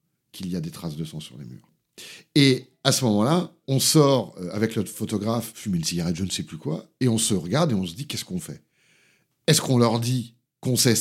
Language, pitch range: French, 110-140 Hz